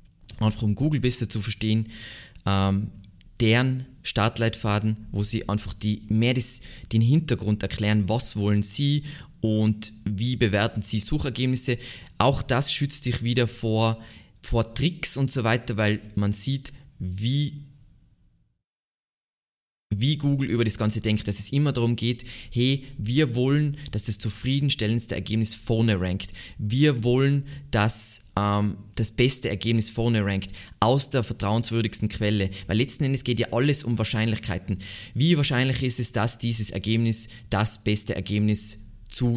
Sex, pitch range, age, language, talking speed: male, 105-130 Hz, 20-39, German, 140 wpm